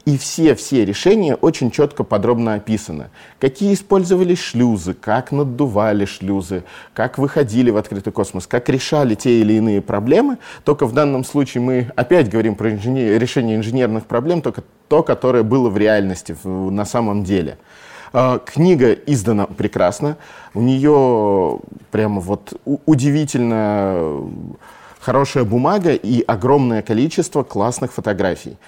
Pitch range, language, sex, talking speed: 105-135 Hz, Russian, male, 125 wpm